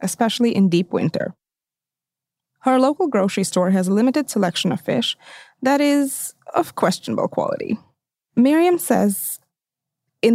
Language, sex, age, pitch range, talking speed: English, female, 20-39, 195-270 Hz, 130 wpm